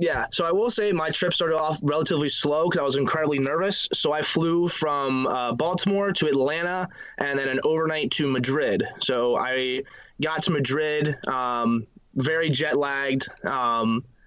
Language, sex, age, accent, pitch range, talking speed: English, male, 20-39, American, 135-160 Hz, 165 wpm